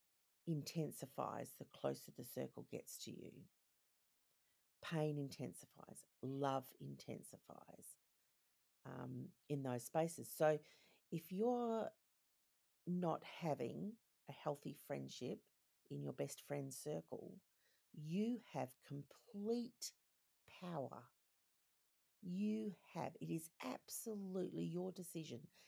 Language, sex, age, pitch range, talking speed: English, female, 50-69, 140-185 Hz, 95 wpm